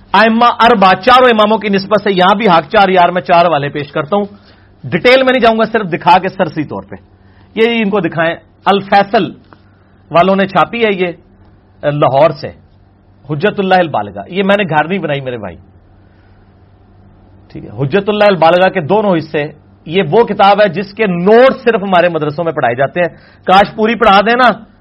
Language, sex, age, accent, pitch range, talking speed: English, male, 40-59, Indian, 140-220 Hz, 160 wpm